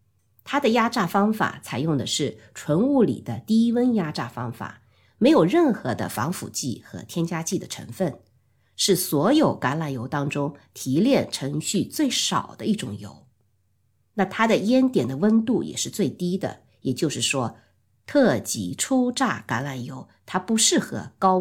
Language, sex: Chinese, female